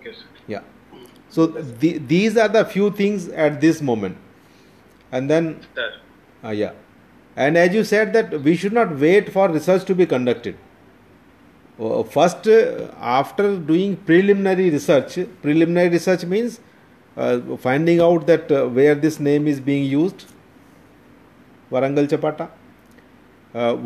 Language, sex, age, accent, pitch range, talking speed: English, male, 40-59, Indian, 130-170 Hz, 135 wpm